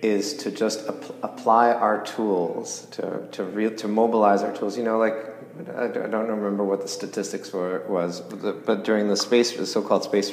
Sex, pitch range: male, 100-125 Hz